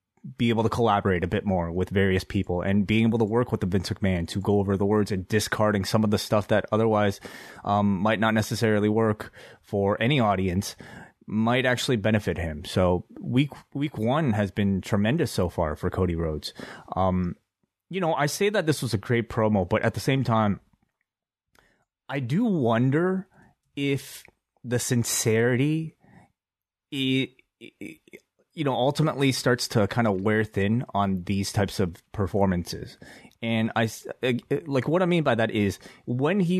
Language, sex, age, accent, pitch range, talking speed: English, male, 30-49, American, 100-120 Hz, 170 wpm